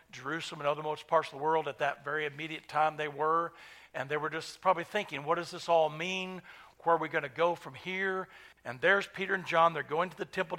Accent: American